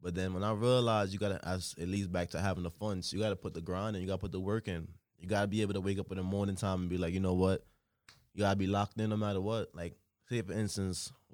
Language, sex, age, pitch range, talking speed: English, male, 20-39, 90-110 Hz, 295 wpm